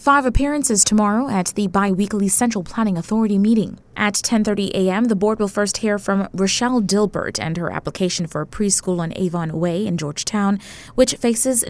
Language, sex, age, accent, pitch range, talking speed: English, female, 20-39, American, 175-225 Hz, 175 wpm